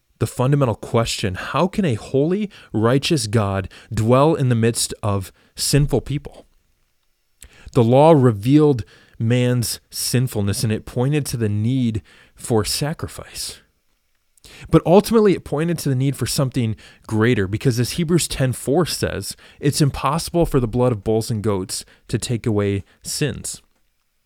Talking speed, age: 140 wpm, 20-39